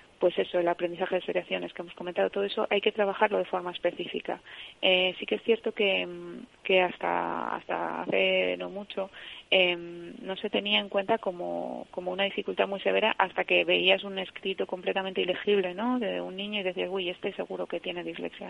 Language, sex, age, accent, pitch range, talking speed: Spanish, female, 20-39, Spanish, 180-200 Hz, 195 wpm